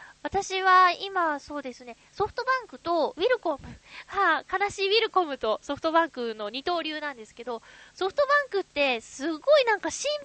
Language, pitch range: Japanese, 255-380 Hz